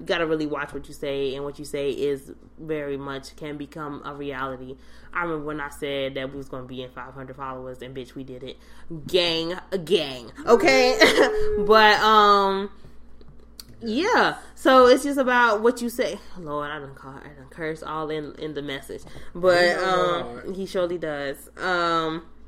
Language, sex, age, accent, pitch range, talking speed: English, female, 20-39, American, 150-205 Hz, 170 wpm